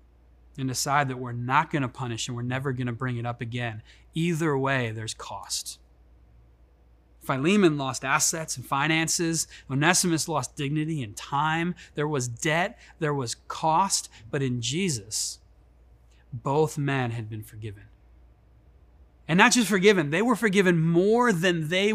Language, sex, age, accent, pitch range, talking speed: English, male, 30-49, American, 120-175 Hz, 145 wpm